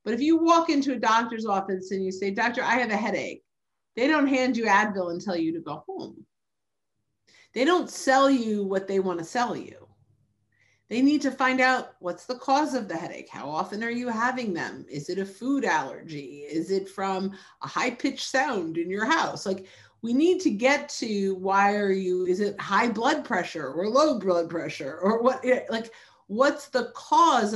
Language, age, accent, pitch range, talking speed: English, 50-69, American, 190-255 Hz, 200 wpm